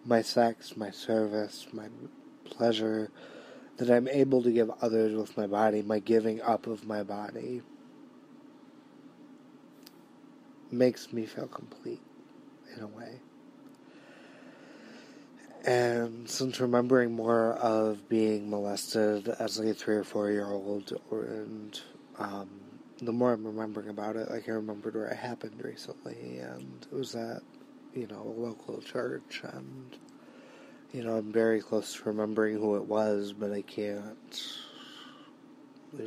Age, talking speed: 20-39, 135 wpm